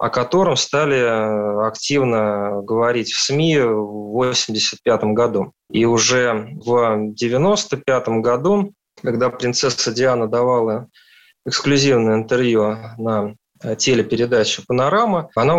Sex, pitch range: male, 110-140 Hz